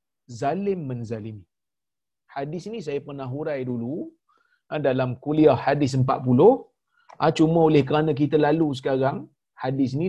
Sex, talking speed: male, 125 wpm